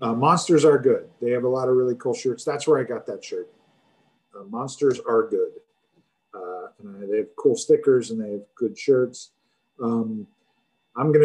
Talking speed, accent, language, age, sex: 195 wpm, American, English, 40-59, male